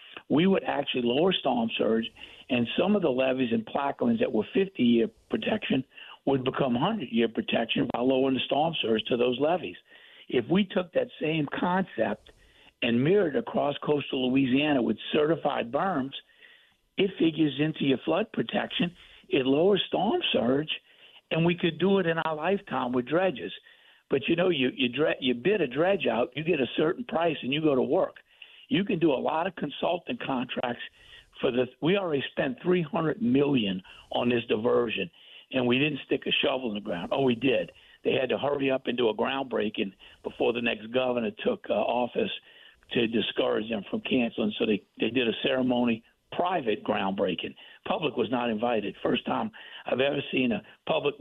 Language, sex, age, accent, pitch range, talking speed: English, male, 60-79, American, 125-190 Hz, 180 wpm